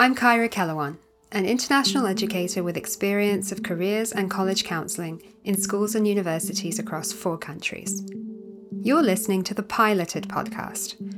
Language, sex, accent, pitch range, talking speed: English, female, British, 180-215 Hz, 140 wpm